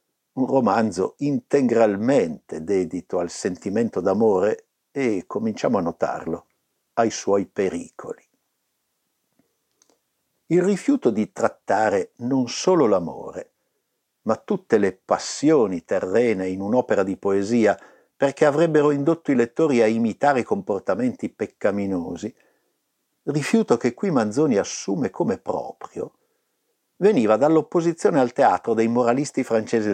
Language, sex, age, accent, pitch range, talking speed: Italian, male, 60-79, native, 125-205 Hz, 105 wpm